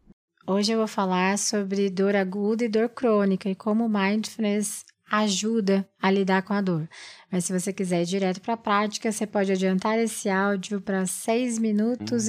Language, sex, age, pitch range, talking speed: Portuguese, female, 20-39, 190-230 Hz, 175 wpm